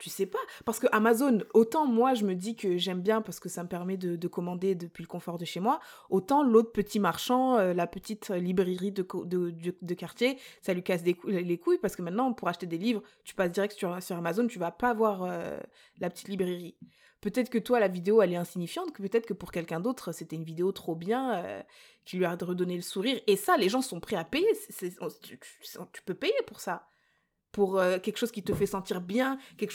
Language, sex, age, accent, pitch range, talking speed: French, female, 20-39, French, 185-235 Hz, 250 wpm